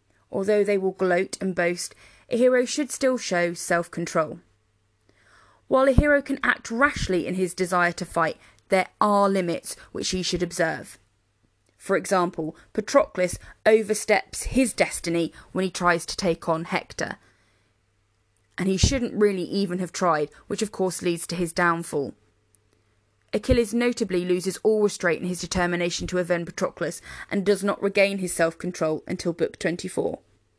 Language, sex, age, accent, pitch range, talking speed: English, female, 20-39, British, 165-210 Hz, 150 wpm